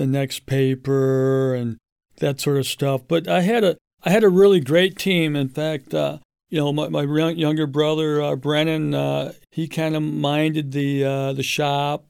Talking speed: 190 wpm